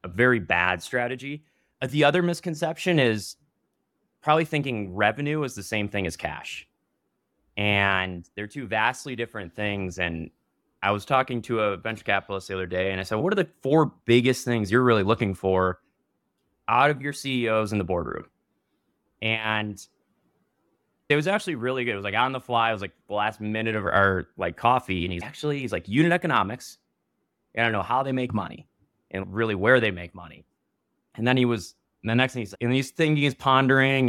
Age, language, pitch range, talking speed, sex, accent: 20-39, English, 100-135 Hz, 190 wpm, male, American